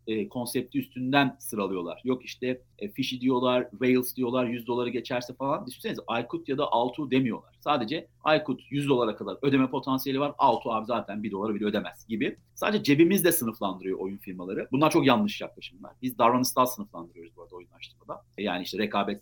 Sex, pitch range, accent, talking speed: male, 105-140 Hz, native, 170 wpm